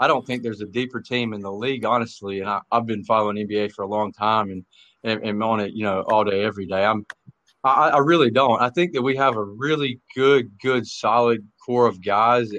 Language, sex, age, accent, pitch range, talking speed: English, male, 40-59, American, 105-125 Hz, 240 wpm